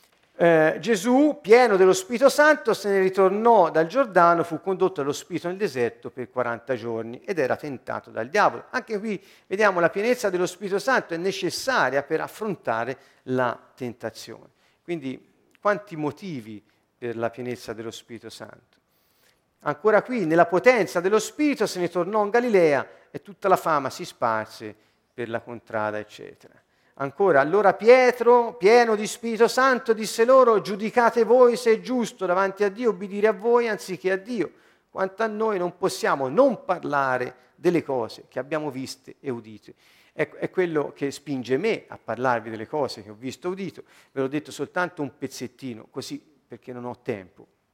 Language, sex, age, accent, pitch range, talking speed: Italian, male, 50-69, native, 130-215 Hz, 165 wpm